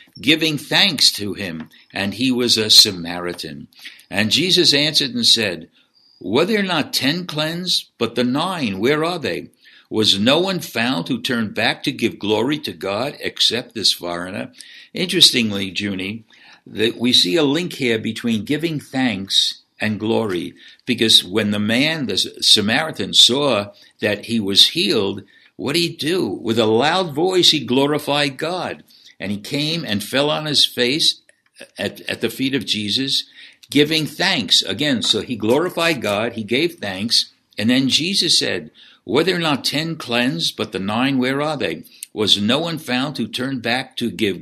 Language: English